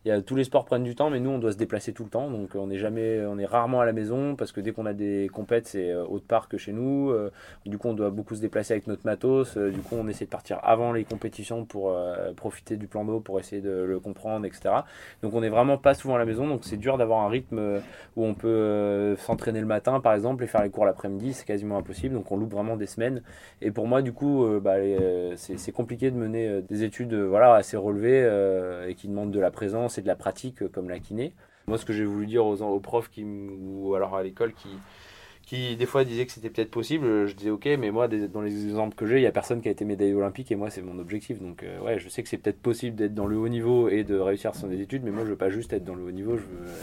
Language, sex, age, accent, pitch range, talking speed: French, male, 20-39, French, 100-115 Hz, 270 wpm